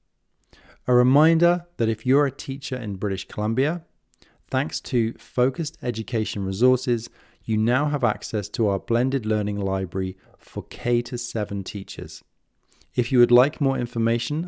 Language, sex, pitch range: English, male, 105-130 Hz